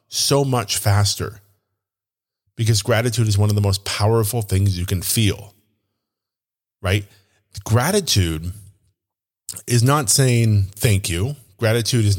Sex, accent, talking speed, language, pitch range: male, American, 120 wpm, English, 95-120 Hz